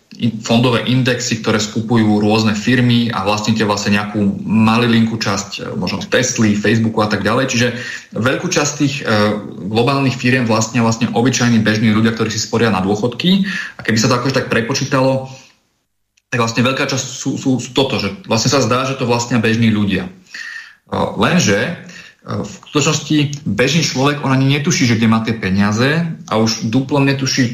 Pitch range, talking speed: 110-130 Hz, 160 wpm